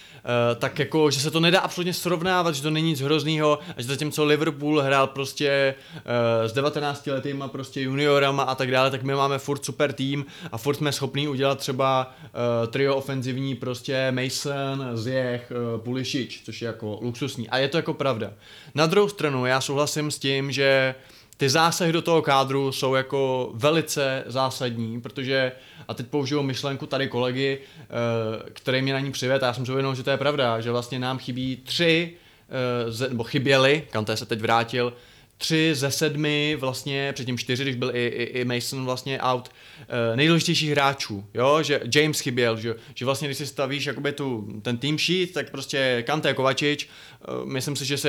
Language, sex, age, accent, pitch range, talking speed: Czech, male, 20-39, native, 125-145 Hz, 180 wpm